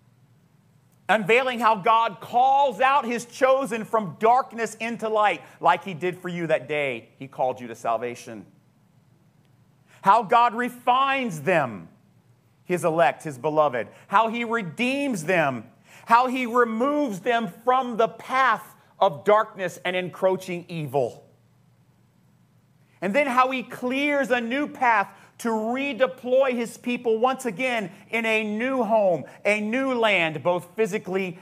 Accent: American